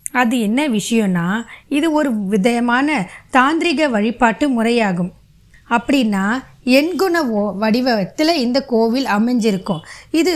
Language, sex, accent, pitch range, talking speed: Tamil, female, native, 210-275 Hz, 95 wpm